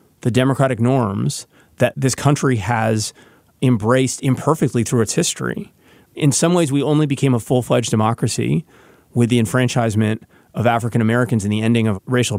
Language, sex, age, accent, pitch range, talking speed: English, male, 30-49, American, 115-145 Hz, 155 wpm